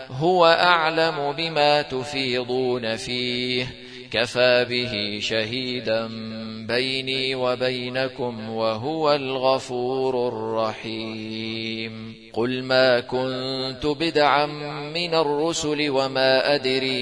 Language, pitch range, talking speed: Arabic, 125-145 Hz, 75 wpm